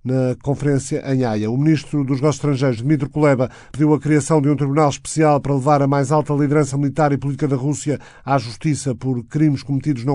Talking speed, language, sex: 205 wpm, Portuguese, male